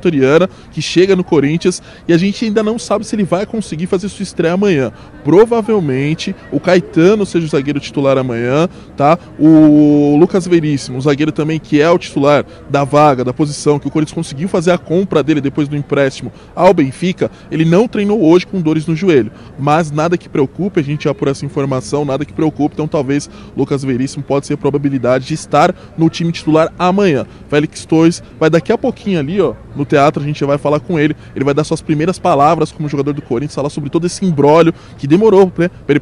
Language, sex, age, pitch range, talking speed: Portuguese, male, 20-39, 140-175 Hz, 210 wpm